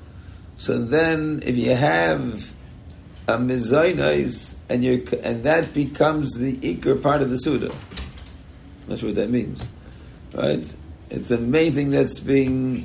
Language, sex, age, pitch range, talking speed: English, male, 60-79, 90-145 Hz, 130 wpm